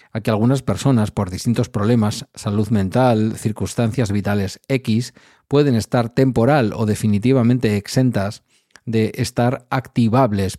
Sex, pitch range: male, 105-125 Hz